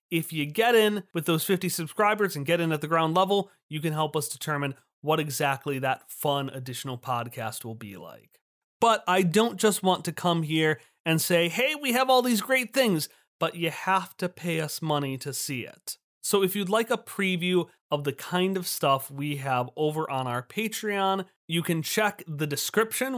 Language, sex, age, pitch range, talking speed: English, male, 30-49, 145-195 Hz, 200 wpm